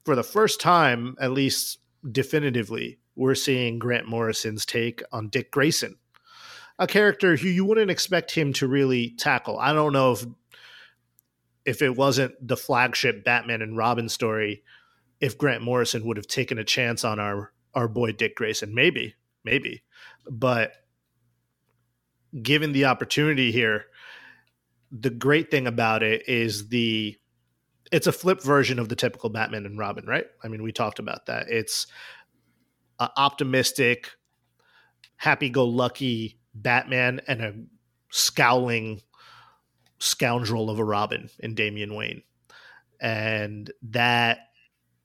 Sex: male